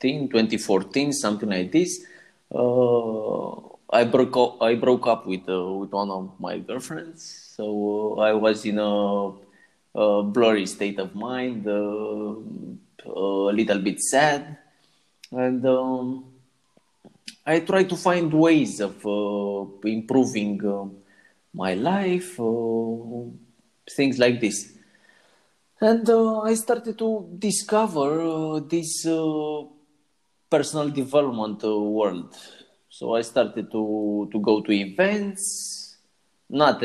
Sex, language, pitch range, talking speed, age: male, English, 100-145 Hz, 115 wpm, 20-39